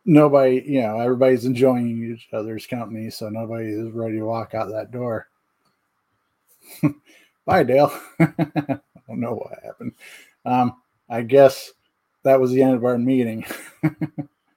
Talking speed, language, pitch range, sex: 140 wpm, English, 110-135 Hz, male